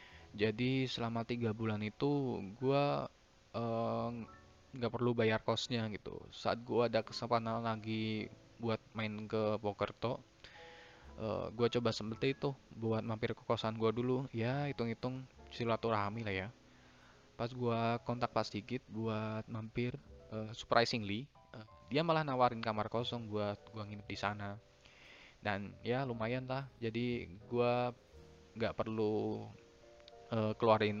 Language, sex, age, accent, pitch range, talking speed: Indonesian, male, 20-39, native, 105-120 Hz, 125 wpm